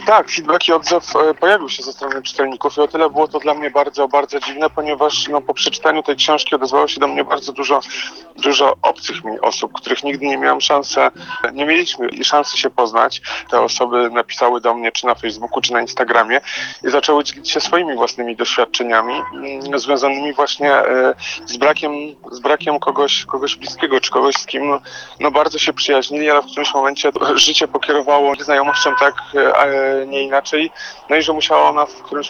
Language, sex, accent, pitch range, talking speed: Polish, male, native, 135-155 Hz, 185 wpm